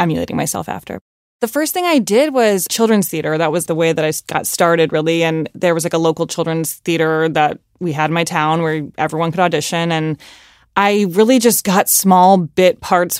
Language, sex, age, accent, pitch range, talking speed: English, female, 20-39, American, 155-190 Hz, 210 wpm